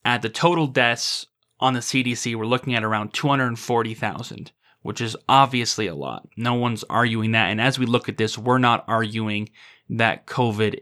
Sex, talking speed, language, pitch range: male, 175 wpm, English, 115-135 Hz